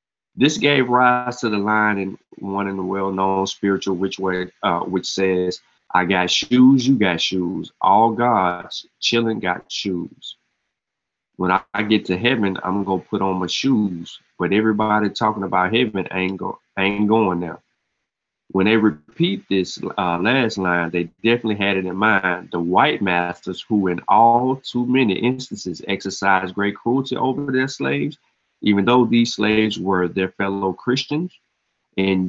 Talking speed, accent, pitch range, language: 160 wpm, American, 95-115 Hz, English